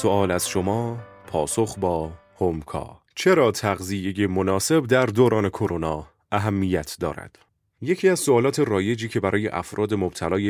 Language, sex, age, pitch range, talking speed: Persian, male, 30-49, 90-110 Hz, 125 wpm